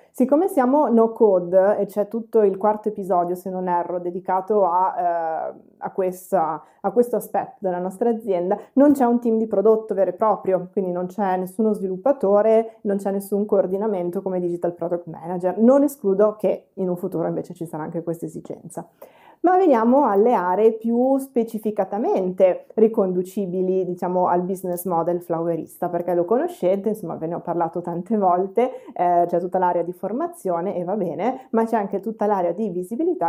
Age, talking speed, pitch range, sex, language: 20-39, 170 wpm, 175-215 Hz, female, Italian